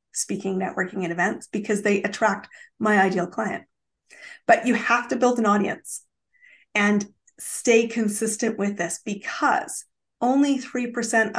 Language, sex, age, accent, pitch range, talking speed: English, female, 30-49, American, 195-245 Hz, 130 wpm